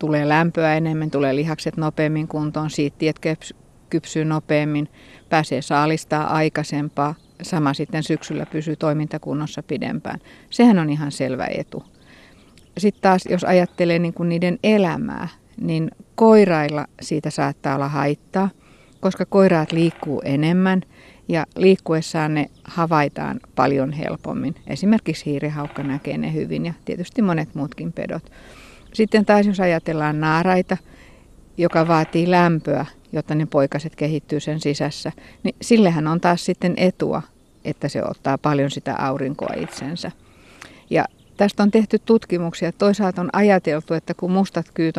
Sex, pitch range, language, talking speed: female, 150-180 Hz, Finnish, 130 wpm